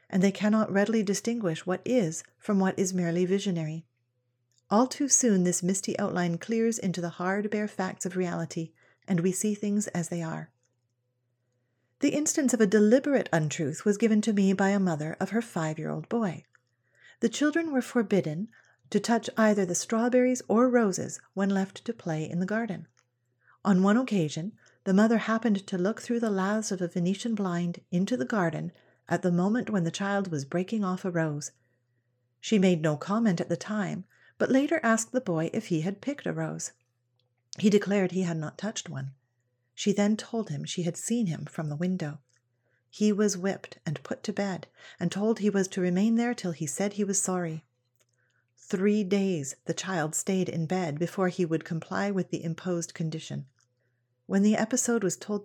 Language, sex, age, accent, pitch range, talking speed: English, female, 40-59, American, 160-210 Hz, 185 wpm